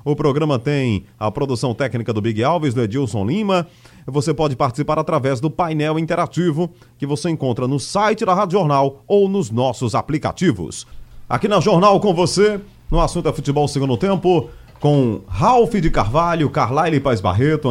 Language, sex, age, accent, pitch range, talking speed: Portuguese, male, 30-49, Brazilian, 120-170 Hz, 165 wpm